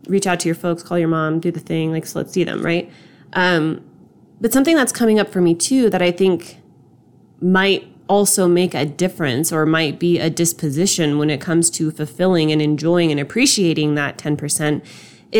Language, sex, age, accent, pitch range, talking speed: English, female, 20-39, American, 160-195 Hz, 195 wpm